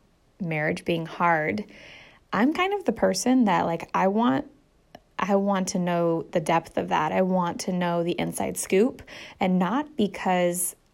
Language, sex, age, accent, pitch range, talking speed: English, female, 10-29, American, 175-235 Hz, 165 wpm